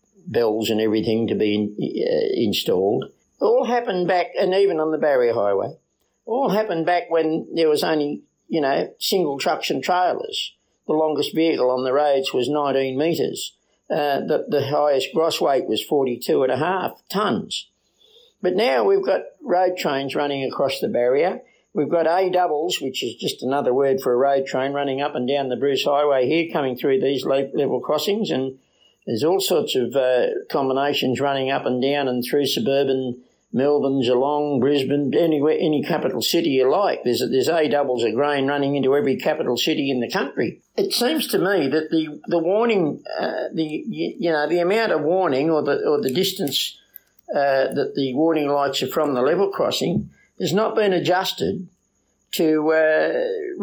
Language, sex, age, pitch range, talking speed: English, male, 50-69, 135-180 Hz, 180 wpm